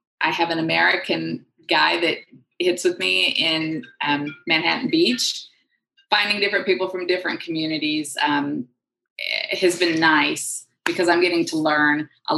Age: 20-39